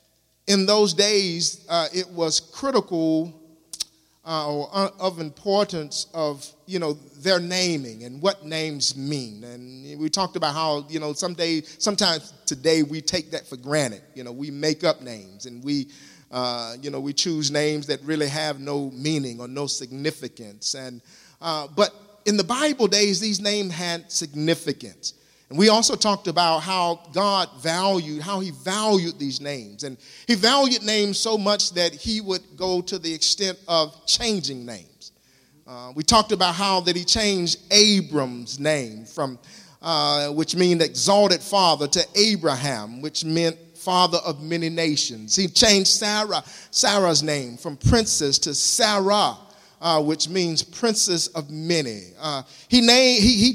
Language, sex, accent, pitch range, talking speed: English, male, American, 145-200 Hz, 155 wpm